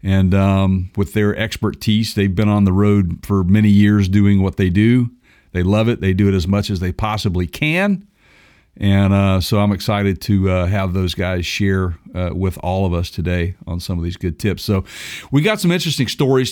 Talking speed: 210 wpm